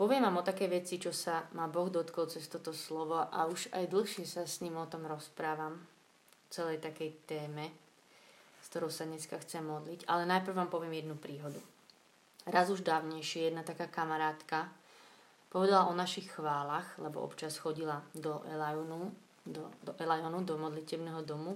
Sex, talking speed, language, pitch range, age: female, 165 wpm, Slovak, 155-180 Hz, 20-39